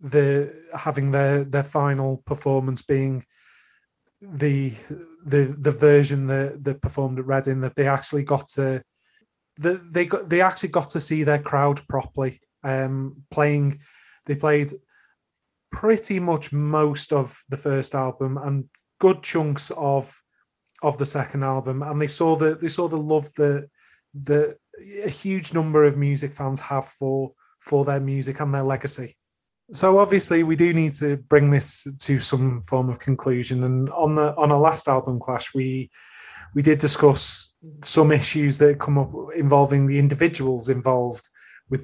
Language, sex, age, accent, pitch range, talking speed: English, male, 30-49, British, 135-155 Hz, 160 wpm